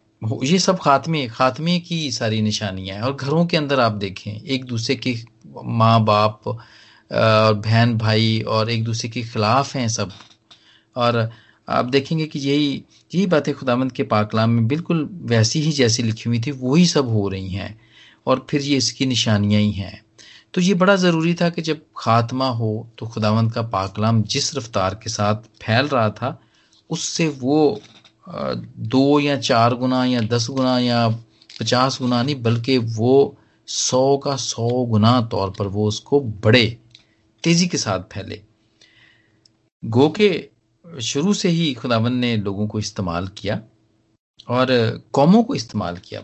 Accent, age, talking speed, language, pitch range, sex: native, 40-59, 160 wpm, Hindi, 110-140 Hz, male